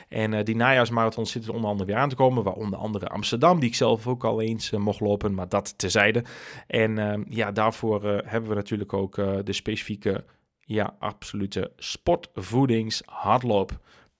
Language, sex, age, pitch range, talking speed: Dutch, male, 30-49, 105-135 Hz, 180 wpm